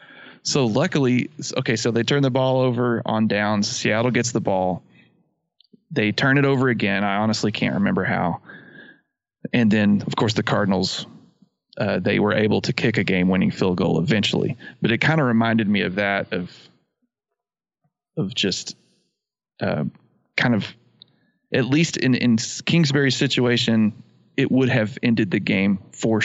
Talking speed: 160 wpm